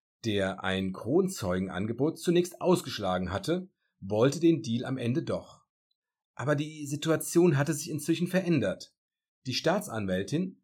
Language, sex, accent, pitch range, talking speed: German, male, German, 95-155 Hz, 120 wpm